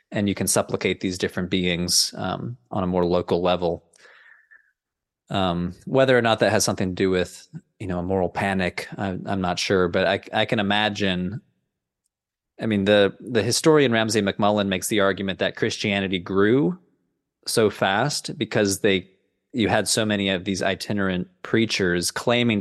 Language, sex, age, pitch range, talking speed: English, male, 20-39, 95-110 Hz, 165 wpm